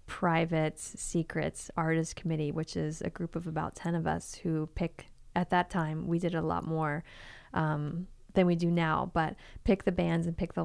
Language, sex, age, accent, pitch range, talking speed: English, female, 20-39, American, 160-190 Hz, 195 wpm